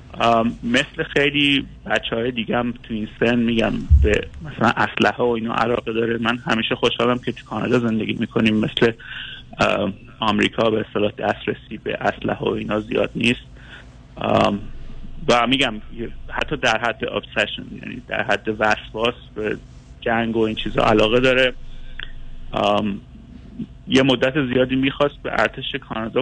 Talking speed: 140 wpm